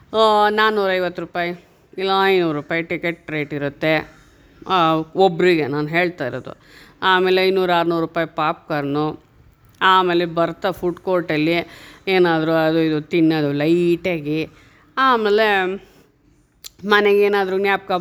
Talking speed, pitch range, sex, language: 100 wpm, 160-195 Hz, female, Kannada